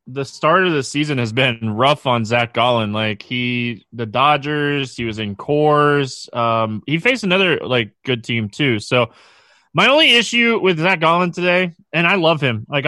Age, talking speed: 20-39, 185 wpm